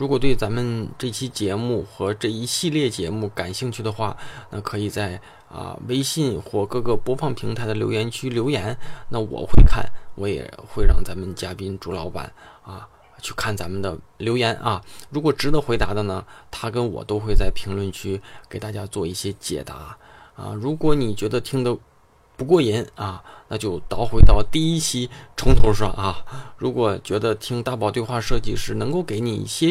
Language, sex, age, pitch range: Chinese, male, 20-39, 105-130 Hz